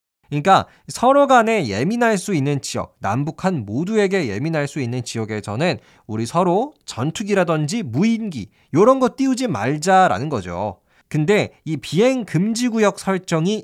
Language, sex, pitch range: Korean, male, 115-185 Hz